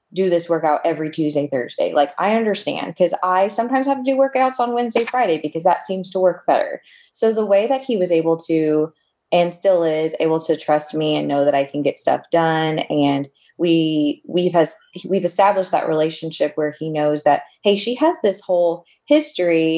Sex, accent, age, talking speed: female, American, 20-39, 200 wpm